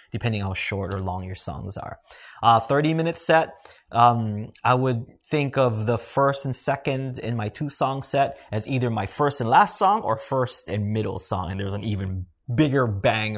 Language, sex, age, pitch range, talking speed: English, male, 20-39, 100-130 Hz, 190 wpm